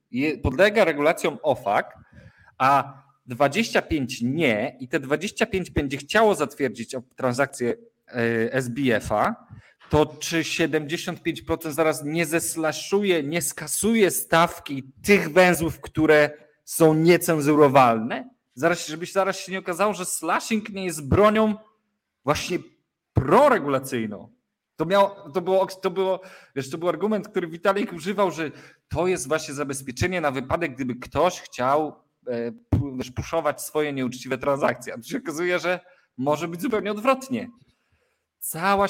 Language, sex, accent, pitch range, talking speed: Polish, male, native, 140-195 Hz, 125 wpm